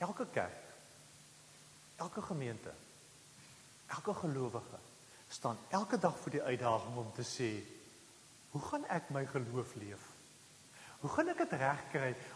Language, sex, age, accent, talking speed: English, male, 40-59, Dutch, 130 wpm